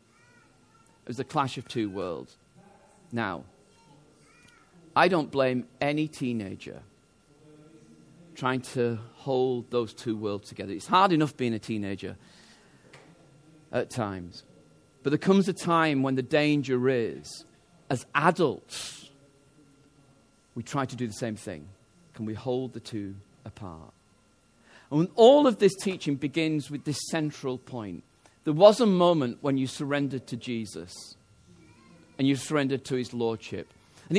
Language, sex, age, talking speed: English, male, 40-59, 135 wpm